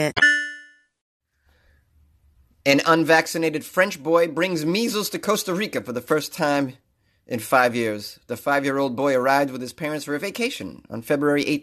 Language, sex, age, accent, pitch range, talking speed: English, male, 30-49, American, 110-160 Hz, 145 wpm